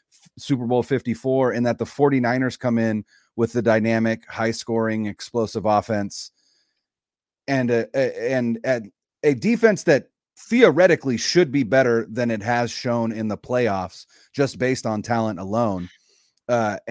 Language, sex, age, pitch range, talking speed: English, male, 30-49, 110-135 Hz, 135 wpm